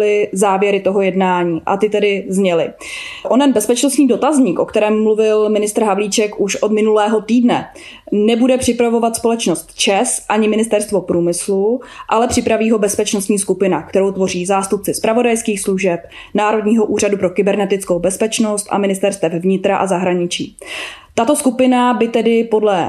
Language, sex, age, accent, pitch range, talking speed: Czech, female, 20-39, native, 200-230 Hz, 135 wpm